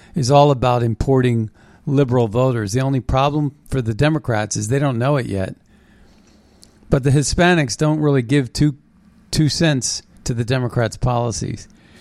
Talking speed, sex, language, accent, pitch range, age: 155 wpm, male, English, American, 125-155 Hz, 50-69